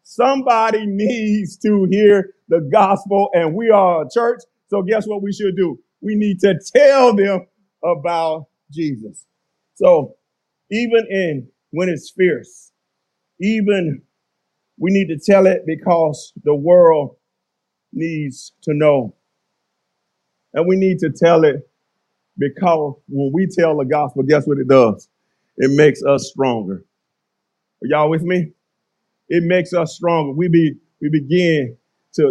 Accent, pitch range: American, 155-220 Hz